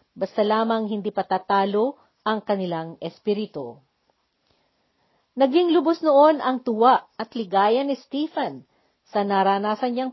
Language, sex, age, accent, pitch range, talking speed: Filipino, female, 50-69, native, 195-260 Hz, 105 wpm